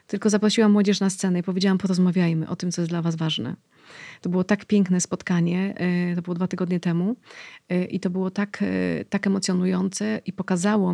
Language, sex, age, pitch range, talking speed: Polish, female, 30-49, 185-215 Hz, 180 wpm